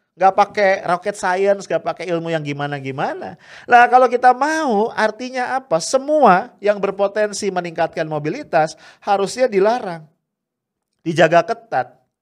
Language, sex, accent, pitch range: English, male, Indonesian, 130-200 Hz